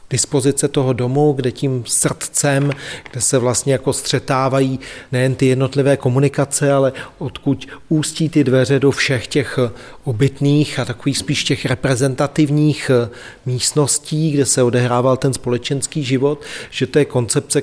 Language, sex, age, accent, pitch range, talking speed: Czech, male, 40-59, native, 125-140 Hz, 135 wpm